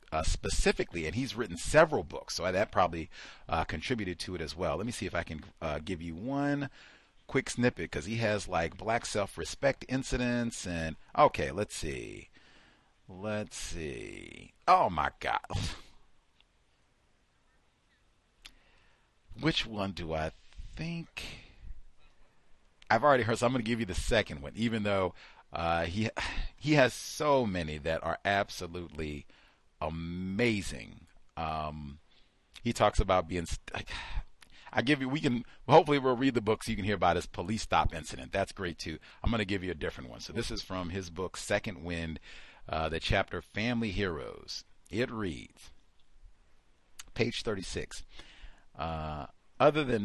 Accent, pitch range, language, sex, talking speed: American, 80-115 Hz, English, male, 155 wpm